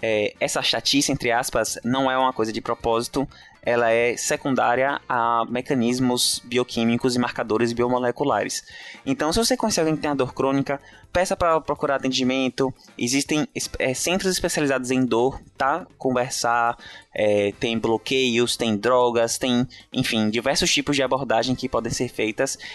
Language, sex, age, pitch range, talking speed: Portuguese, male, 20-39, 120-145 Hz, 150 wpm